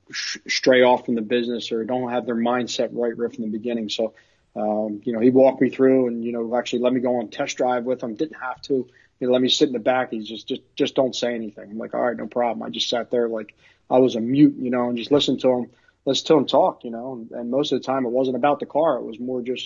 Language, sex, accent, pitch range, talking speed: English, male, American, 115-130 Hz, 295 wpm